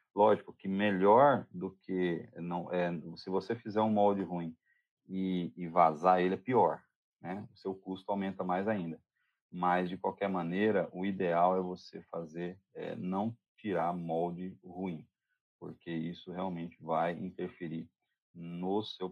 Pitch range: 85-95 Hz